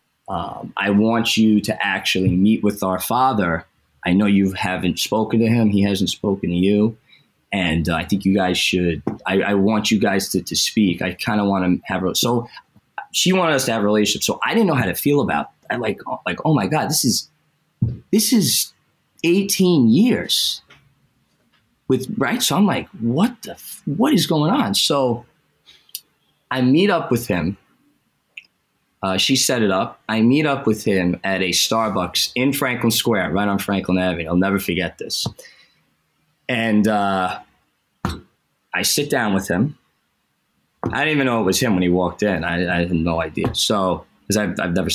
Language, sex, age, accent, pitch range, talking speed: English, male, 20-39, American, 95-125 Hz, 185 wpm